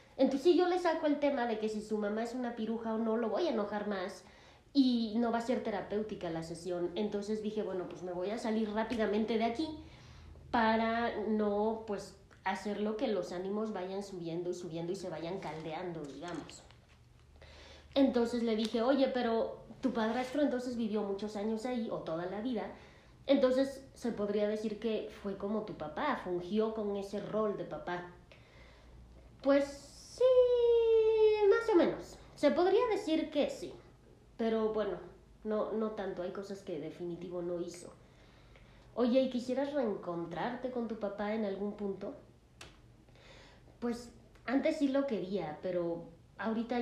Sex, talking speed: female, 160 wpm